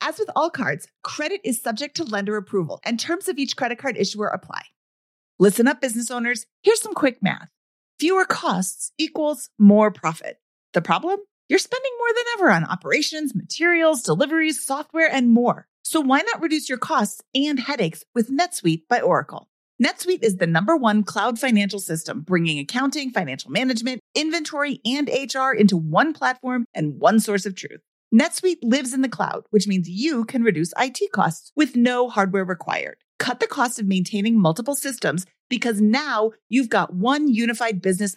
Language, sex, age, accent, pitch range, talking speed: English, female, 30-49, American, 200-290 Hz, 175 wpm